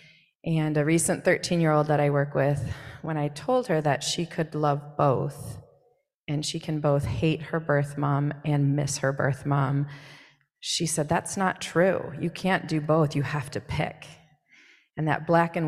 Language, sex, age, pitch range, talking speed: English, female, 30-49, 145-165 Hz, 180 wpm